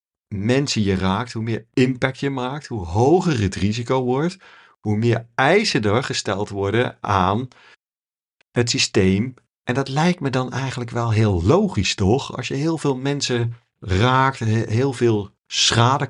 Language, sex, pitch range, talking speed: Dutch, male, 100-130 Hz, 155 wpm